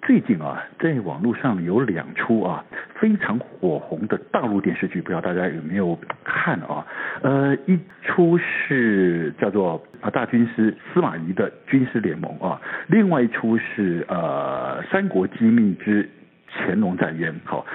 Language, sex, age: Chinese, male, 60-79